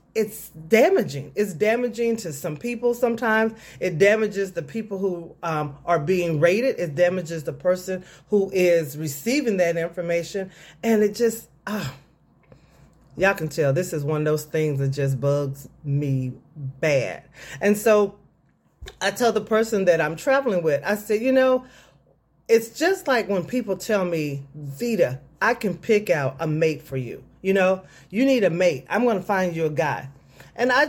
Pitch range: 170-255 Hz